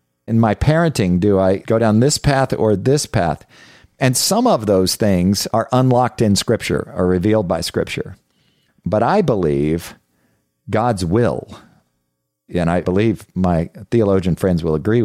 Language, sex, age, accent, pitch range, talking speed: English, male, 50-69, American, 80-105 Hz, 150 wpm